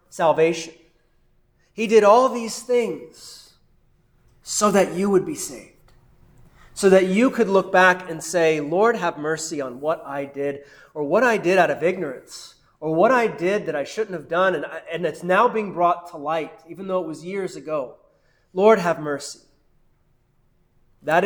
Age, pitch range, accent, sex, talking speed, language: 30-49, 150-185 Hz, American, male, 170 wpm, English